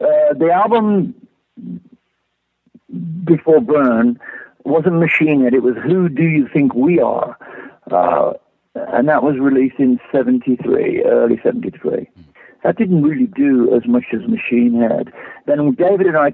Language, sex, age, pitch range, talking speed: English, male, 60-79, 135-190 Hz, 140 wpm